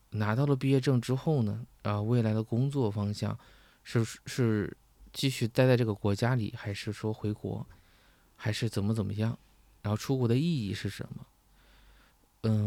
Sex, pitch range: male, 105-130 Hz